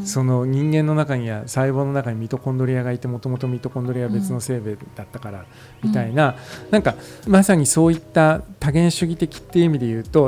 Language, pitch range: Japanese, 120-160 Hz